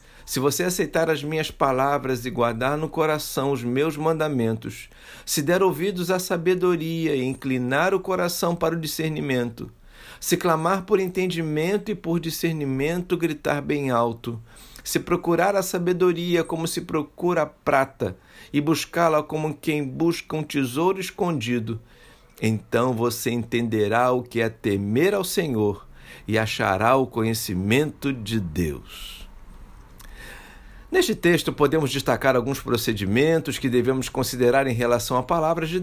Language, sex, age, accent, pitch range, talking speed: Portuguese, male, 60-79, Brazilian, 115-165 Hz, 135 wpm